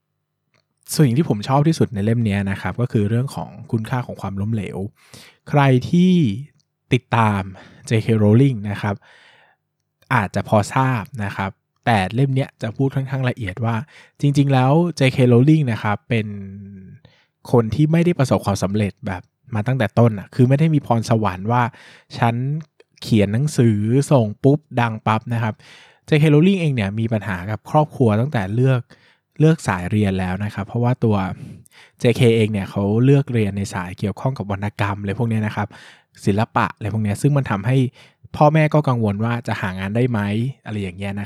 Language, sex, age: Thai, male, 20-39